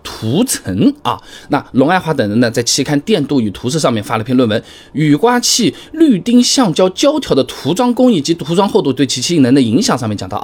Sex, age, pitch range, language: male, 20-39, 115-195 Hz, Chinese